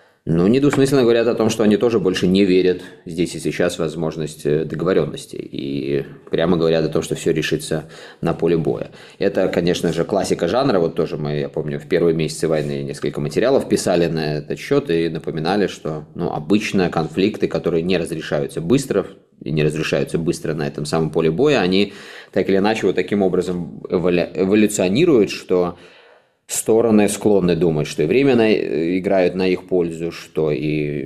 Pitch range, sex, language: 80-95 Hz, male, Russian